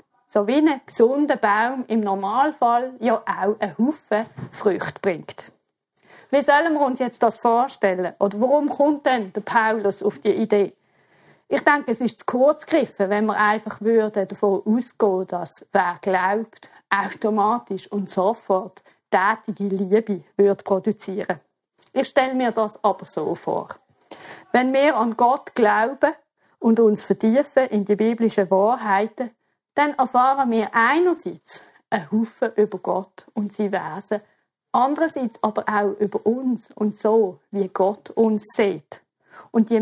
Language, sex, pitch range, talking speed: German, female, 200-250 Hz, 145 wpm